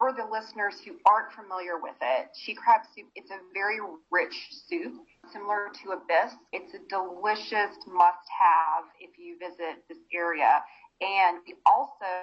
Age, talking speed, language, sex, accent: 30-49, 150 wpm, English, female, American